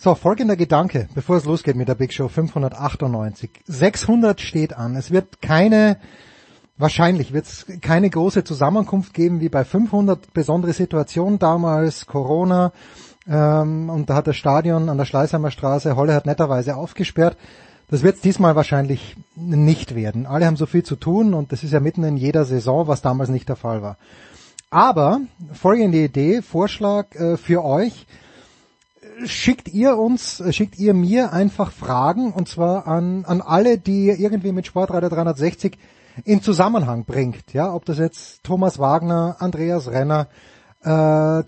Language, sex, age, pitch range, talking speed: German, male, 30-49, 150-190 Hz, 160 wpm